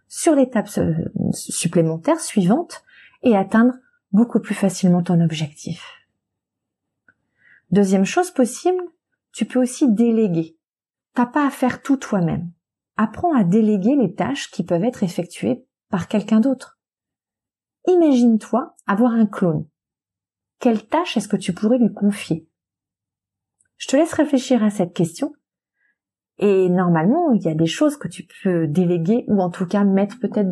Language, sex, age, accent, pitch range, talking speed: French, female, 30-49, French, 175-245 Hz, 140 wpm